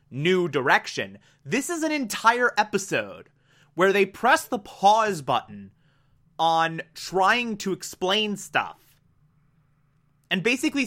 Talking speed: 110 wpm